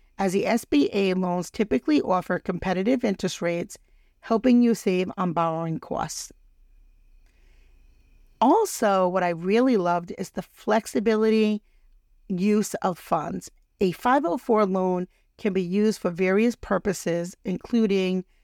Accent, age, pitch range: American, 50-69, 175-210 Hz